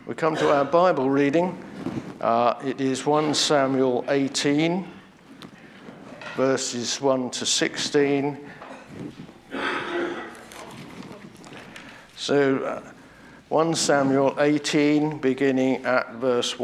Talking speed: 85 wpm